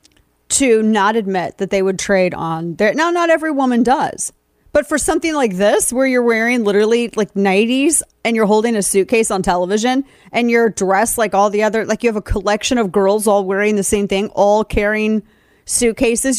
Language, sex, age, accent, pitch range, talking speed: English, female, 30-49, American, 210-275 Hz, 200 wpm